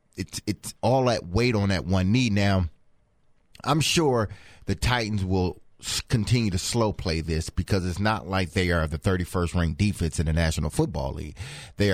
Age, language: 30-49, English